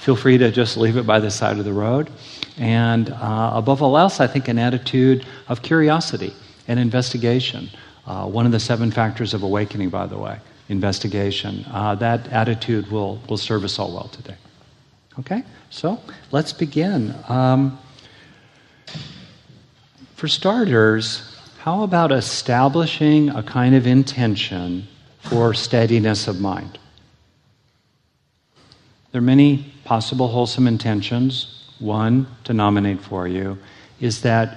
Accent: American